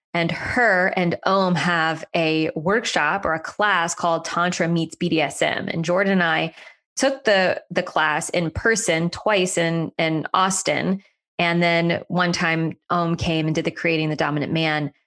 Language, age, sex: English, 20-39, female